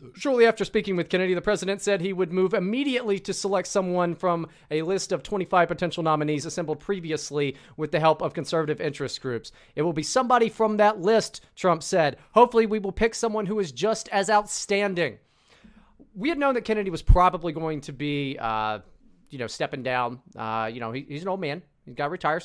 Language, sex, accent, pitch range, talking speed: English, male, American, 145-205 Hz, 205 wpm